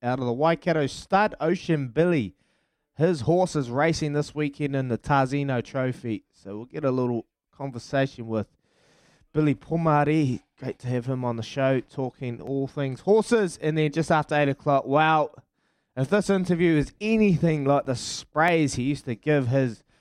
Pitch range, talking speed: 115-145 Hz, 170 wpm